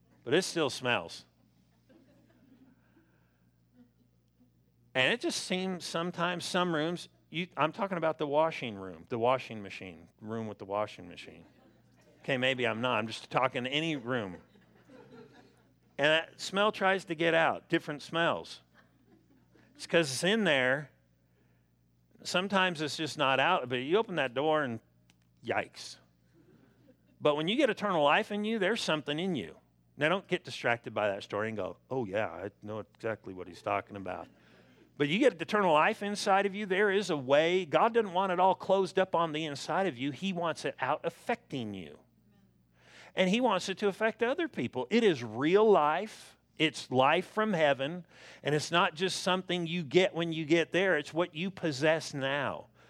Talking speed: 170 wpm